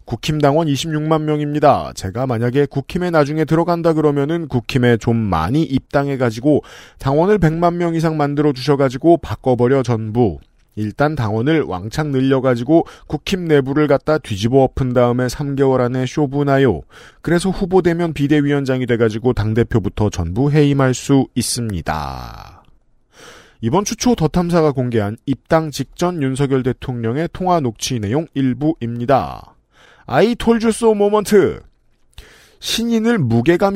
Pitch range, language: 120-160 Hz, Korean